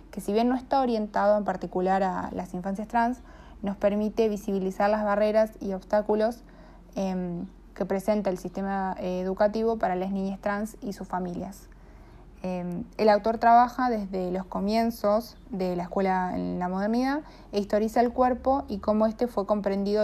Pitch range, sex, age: 185-215 Hz, female, 20-39